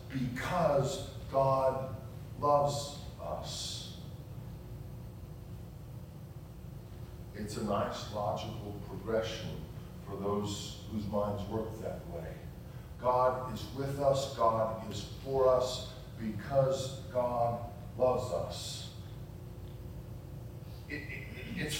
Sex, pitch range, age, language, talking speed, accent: male, 115-140 Hz, 50-69, English, 80 wpm, American